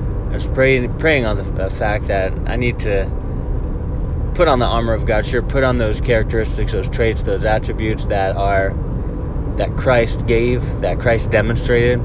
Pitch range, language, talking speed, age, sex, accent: 95-120 Hz, English, 165 wpm, 30-49, male, American